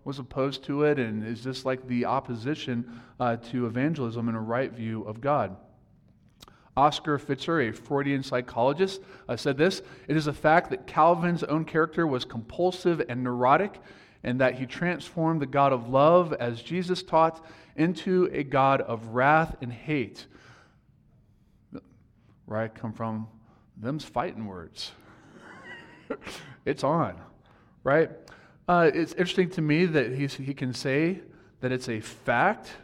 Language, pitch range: English, 120-160 Hz